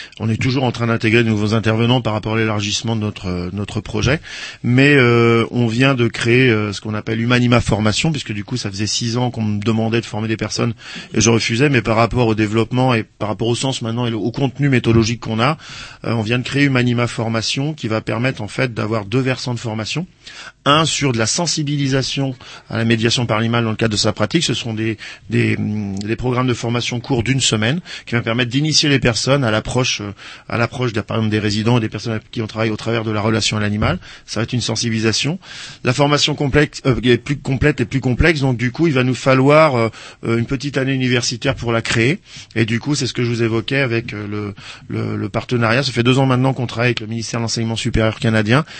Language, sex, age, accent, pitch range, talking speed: French, male, 40-59, French, 110-130 Hz, 235 wpm